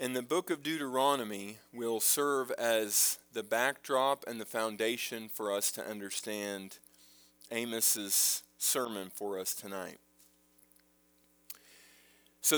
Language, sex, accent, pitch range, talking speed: English, male, American, 100-145 Hz, 110 wpm